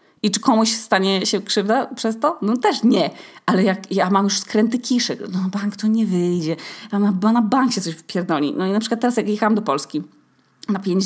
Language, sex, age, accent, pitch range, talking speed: Polish, female, 20-39, native, 190-225 Hz, 210 wpm